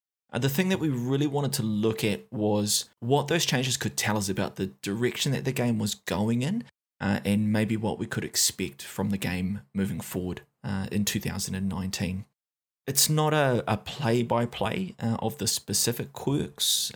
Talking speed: 175 wpm